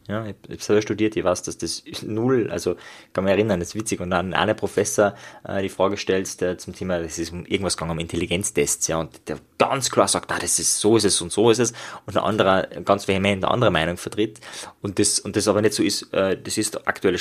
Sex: male